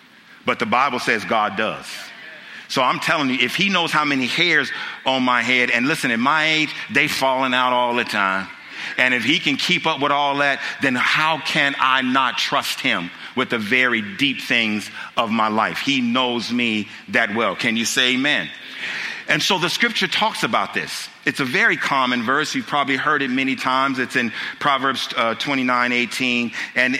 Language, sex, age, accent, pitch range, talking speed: English, male, 50-69, American, 120-145 Hz, 200 wpm